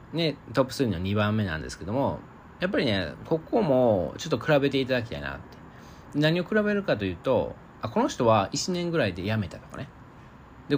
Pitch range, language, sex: 105-145 Hz, Japanese, male